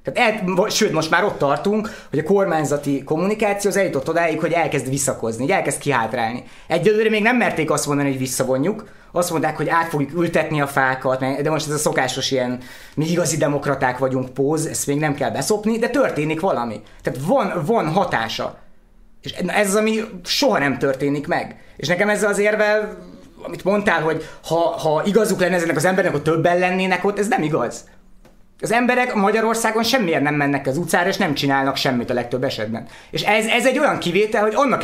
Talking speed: 190 wpm